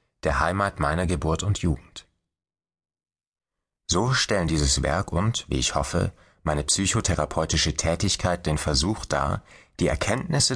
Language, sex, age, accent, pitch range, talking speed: German, male, 30-49, German, 75-95 Hz, 125 wpm